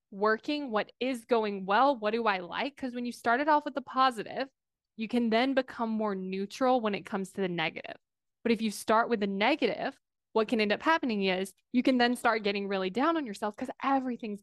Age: 20-39